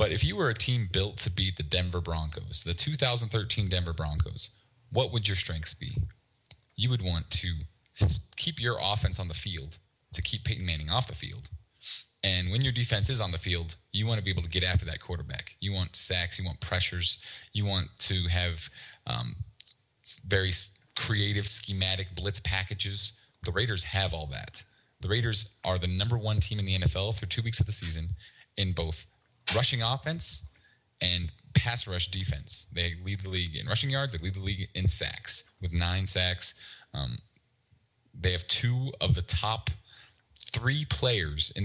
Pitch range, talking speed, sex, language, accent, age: 90-110 Hz, 185 wpm, male, English, American, 20-39